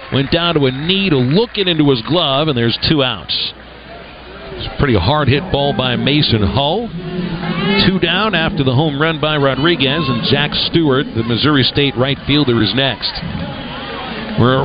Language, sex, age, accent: English, male, 50-69, American